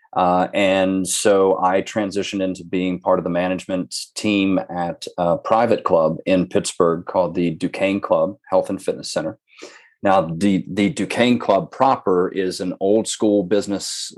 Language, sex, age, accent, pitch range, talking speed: English, male, 30-49, American, 90-100 Hz, 155 wpm